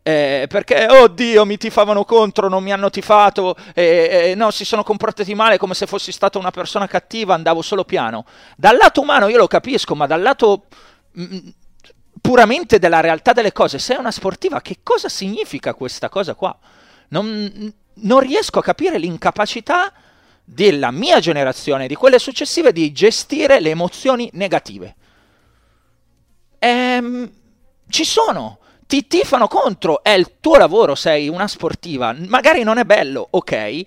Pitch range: 175-245 Hz